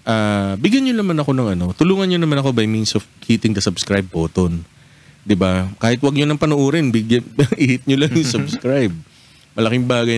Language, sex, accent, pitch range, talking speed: Filipino, male, native, 105-150 Hz, 220 wpm